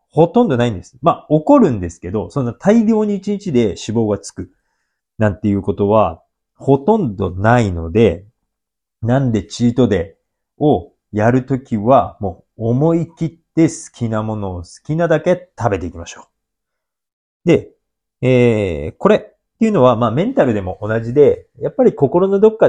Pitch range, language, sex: 100-165 Hz, Japanese, male